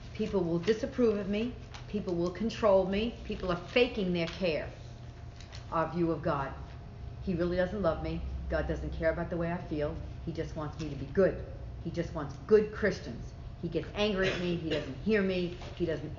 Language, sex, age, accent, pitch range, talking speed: English, female, 50-69, American, 140-175 Hz, 200 wpm